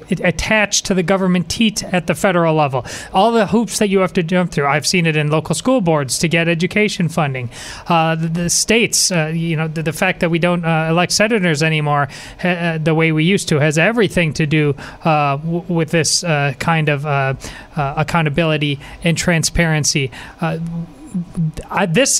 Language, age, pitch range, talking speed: English, 30-49, 155-185 Hz, 185 wpm